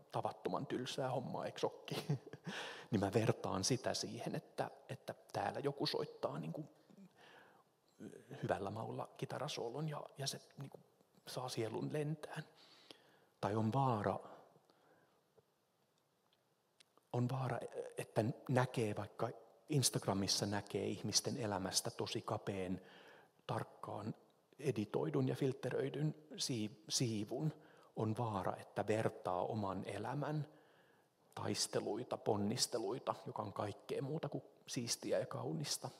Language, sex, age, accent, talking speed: Finnish, male, 30-49, native, 100 wpm